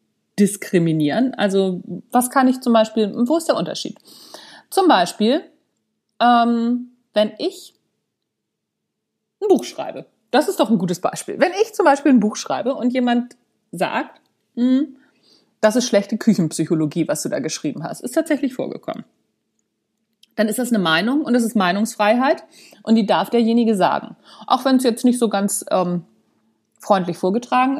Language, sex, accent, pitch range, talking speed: German, female, German, 210-280 Hz, 155 wpm